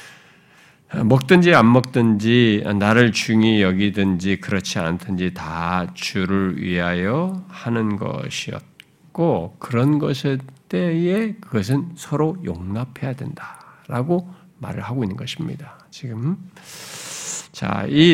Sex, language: male, Korean